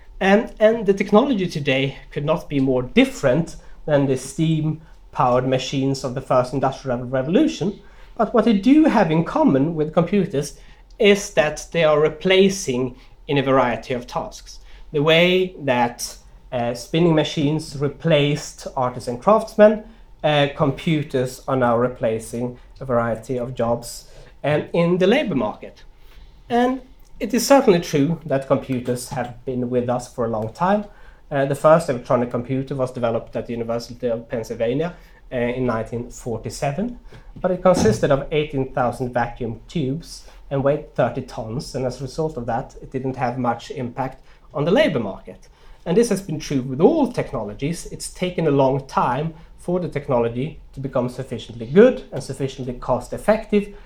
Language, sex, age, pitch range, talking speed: English, male, 30-49, 125-170 Hz, 155 wpm